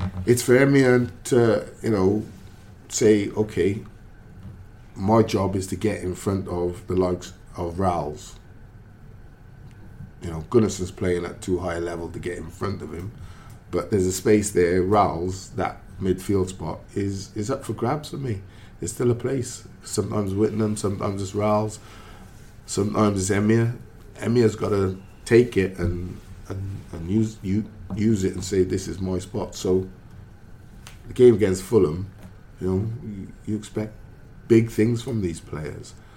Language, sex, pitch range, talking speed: English, male, 95-110 Hz, 160 wpm